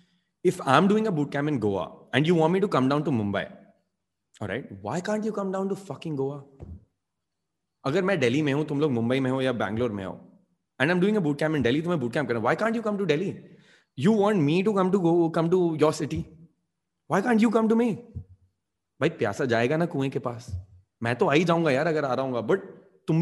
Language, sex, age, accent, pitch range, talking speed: English, male, 20-39, Indian, 120-180 Hz, 235 wpm